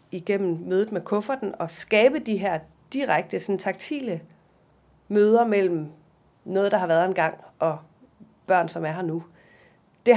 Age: 30-49